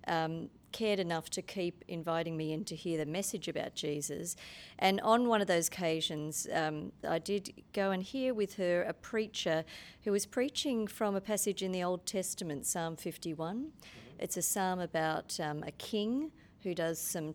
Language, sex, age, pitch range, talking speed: English, female, 40-59, 160-200 Hz, 180 wpm